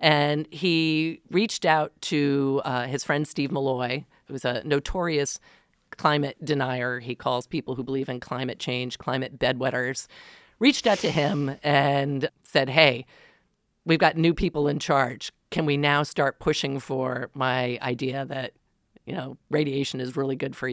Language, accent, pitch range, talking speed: English, American, 130-155 Hz, 155 wpm